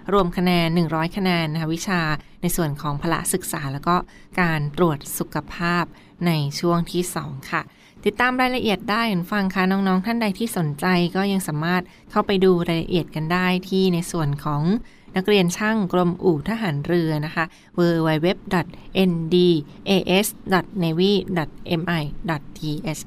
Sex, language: female, Thai